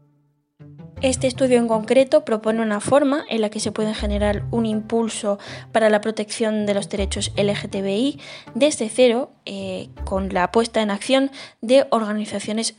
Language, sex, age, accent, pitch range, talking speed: Spanish, female, 20-39, Spanish, 195-235 Hz, 150 wpm